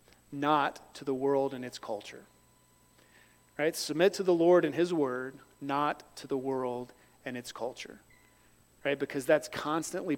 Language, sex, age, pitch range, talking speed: English, male, 40-59, 135-165 Hz, 155 wpm